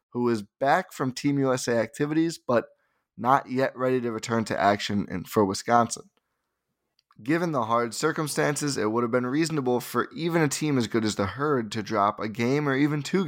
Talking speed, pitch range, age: 190 wpm, 105-135 Hz, 20-39